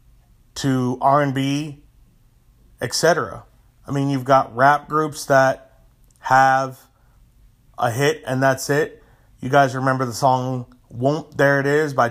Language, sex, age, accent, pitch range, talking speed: English, male, 30-49, American, 120-150 Hz, 130 wpm